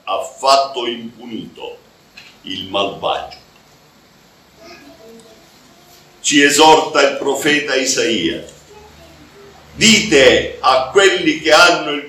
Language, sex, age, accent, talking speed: Italian, male, 50-69, native, 80 wpm